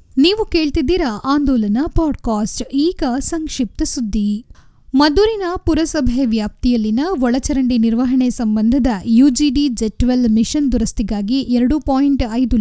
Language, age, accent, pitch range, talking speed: Kannada, 10-29, native, 230-285 Hz, 95 wpm